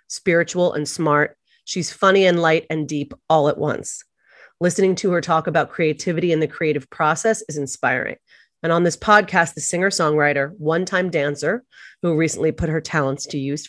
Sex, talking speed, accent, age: female, 170 wpm, American, 30-49